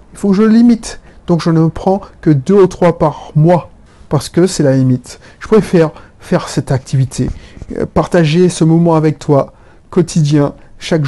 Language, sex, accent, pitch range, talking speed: French, male, French, 140-185 Hz, 175 wpm